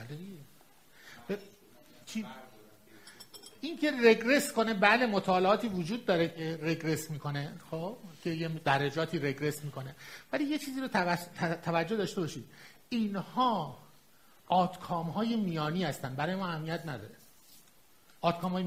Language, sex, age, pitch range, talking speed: Persian, male, 50-69, 160-225 Hz, 115 wpm